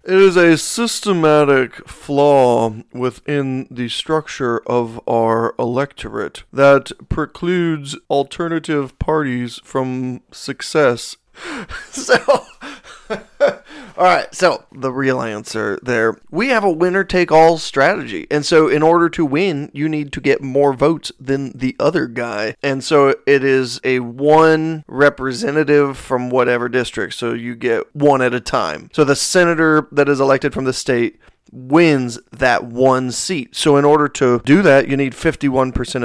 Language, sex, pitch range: English, male, 125-150 Hz